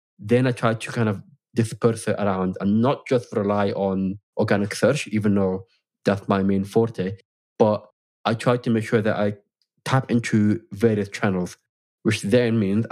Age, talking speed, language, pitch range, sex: 20-39, 170 wpm, English, 100-115 Hz, male